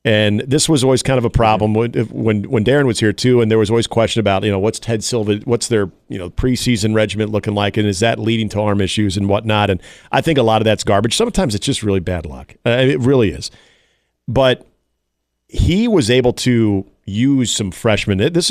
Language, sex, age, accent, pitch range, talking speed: English, male, 40-59, American, 105-125 Hz, 225 wpm